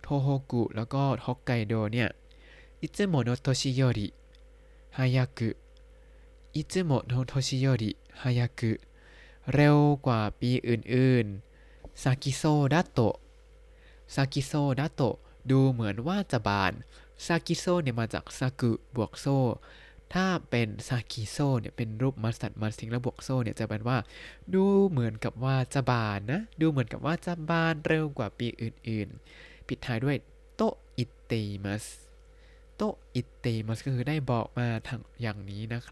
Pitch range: 115-155 Hz